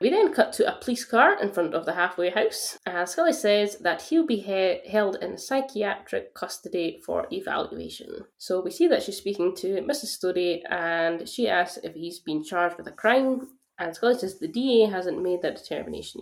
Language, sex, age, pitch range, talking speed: English, female, 10-29, 175-225 Hz, 195 wpm